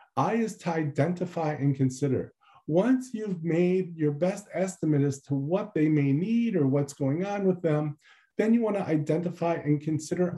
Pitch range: 130-165 Hz